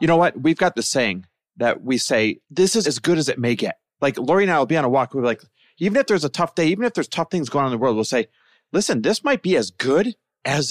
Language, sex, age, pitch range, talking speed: English, male, 30-49, 130-195 Hz, 310 wpm